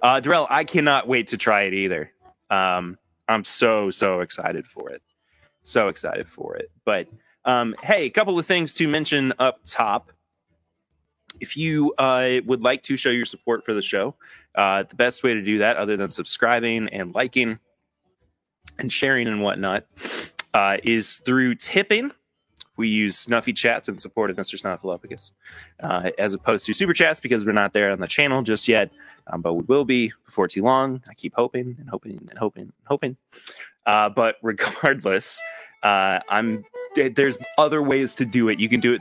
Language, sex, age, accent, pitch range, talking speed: English, male, 20-39, American, 100-140 Hz, 185 wpm